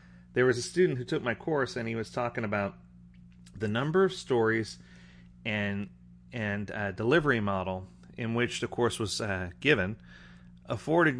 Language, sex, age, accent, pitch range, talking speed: English, male, 30-49, American, 90-125 Hz, 160 wpm